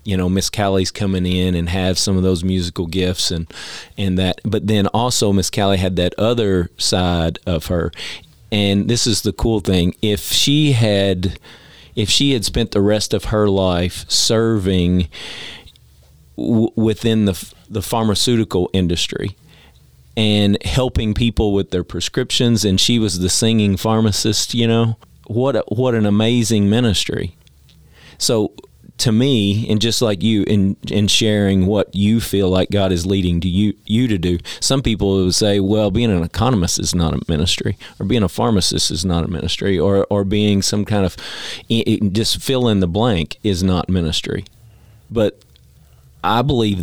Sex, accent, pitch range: male, American, 90-110 Hz